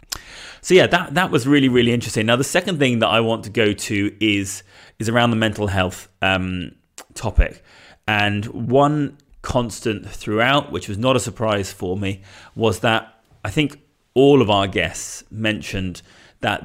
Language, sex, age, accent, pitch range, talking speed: English, male, 30-49, British, 95-115 Hz, 170 wpm